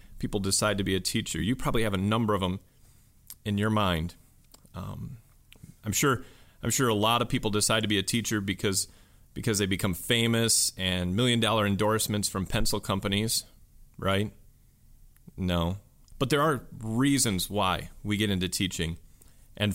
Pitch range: 95-115 Hz